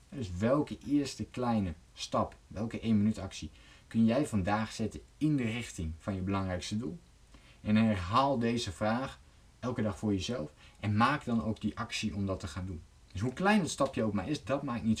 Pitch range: 95-120 Hz